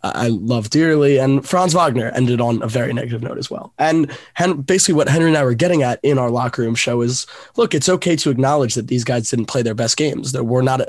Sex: male